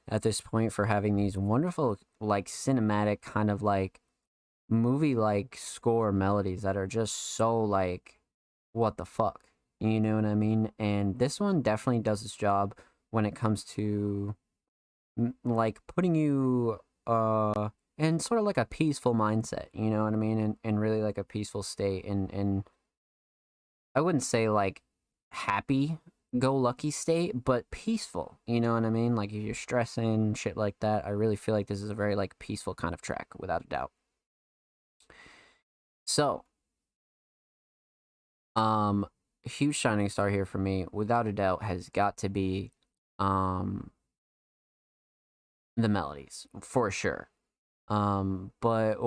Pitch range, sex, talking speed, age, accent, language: 100-115 Hz, male, 155 wpm, 20-39, American, English